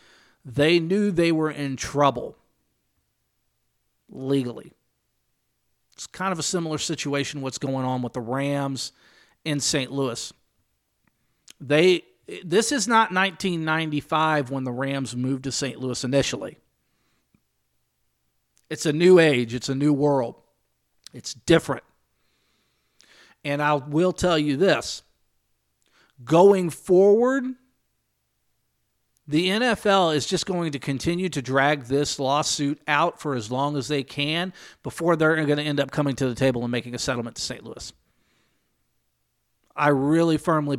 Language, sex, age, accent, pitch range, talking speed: English, male, 50-69, American, 125-155 Hz, 135 wpm